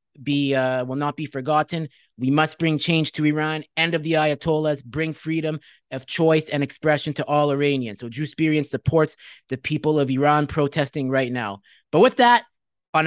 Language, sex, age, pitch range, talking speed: English, male, 30-49, 140-195 Hz, 185 wpm